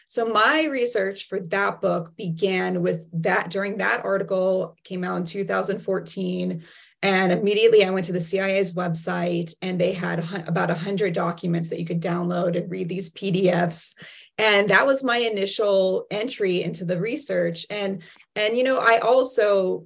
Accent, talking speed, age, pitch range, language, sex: American, 165 wpm, 20-39, 180-215 Hz, English, female